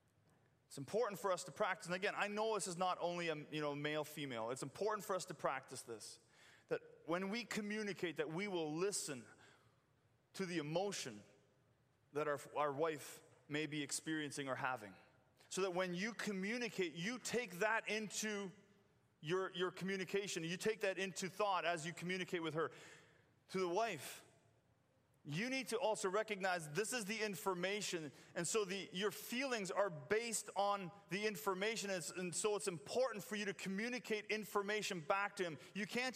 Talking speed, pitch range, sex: 175 wpm, 155-215 Hz, male